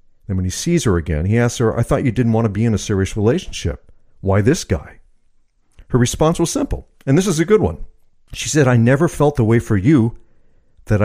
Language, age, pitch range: English, 50-69, 95-125 Hz